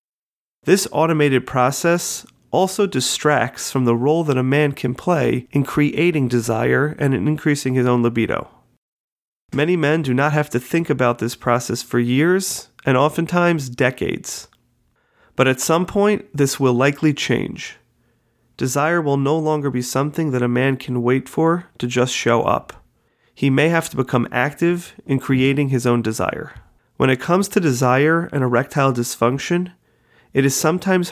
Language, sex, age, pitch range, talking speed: English, male, 30-49, 125-155 Hz, 160 wpm